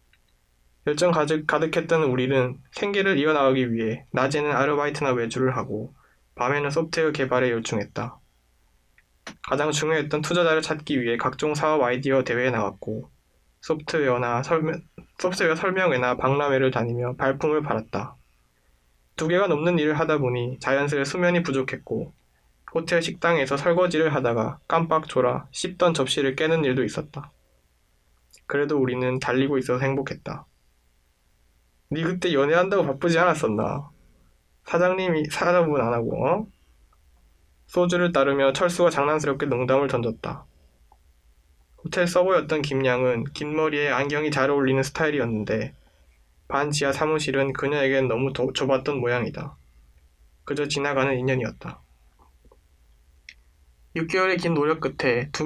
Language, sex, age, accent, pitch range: Korean, male, 20-39, native, 100-155 Hz